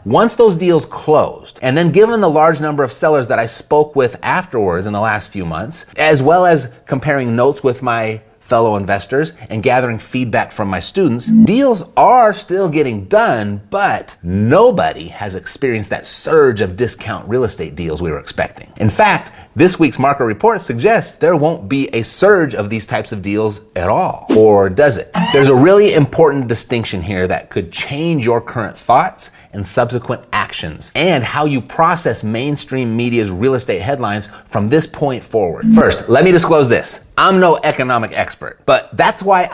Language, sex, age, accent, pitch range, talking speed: English, male, 30-49, American, 110-160 Hz, 180 wpm